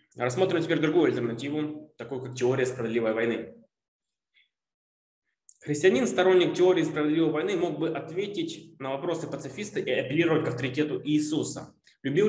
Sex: male